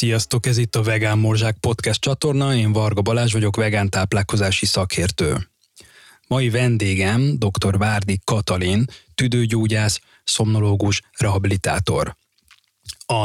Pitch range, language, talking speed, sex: 105-125 Hz, Hungarian, 105 wpm, male